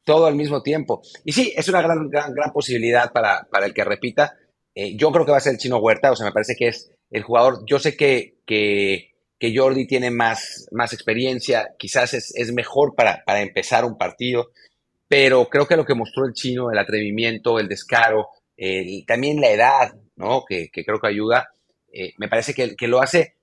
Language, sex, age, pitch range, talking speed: English, male, 30-49, 110-145 Hz, 215 wpm